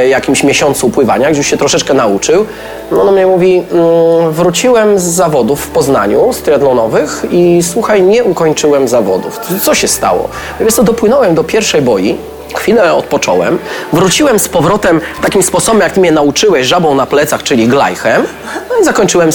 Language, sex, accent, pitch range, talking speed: Polish, male, native, 125-190 Hz, 165 wpm